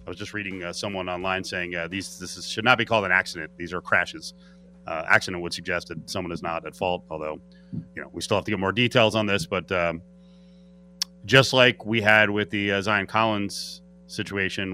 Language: English